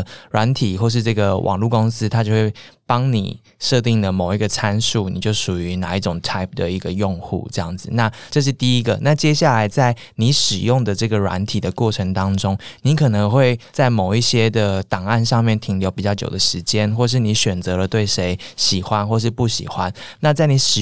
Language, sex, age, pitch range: Chinese, male, 20-39, 100-120 Hz